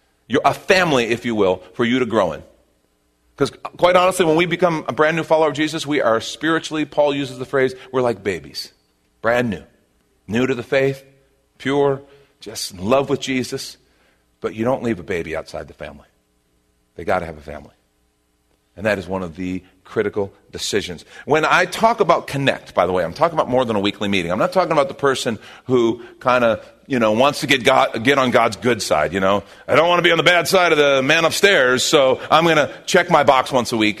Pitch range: 95-150 Hz